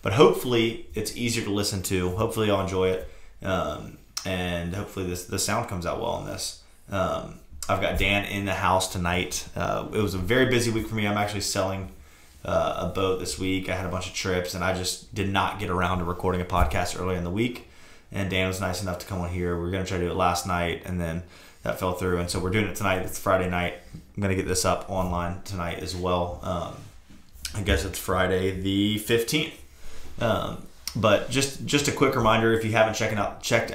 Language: English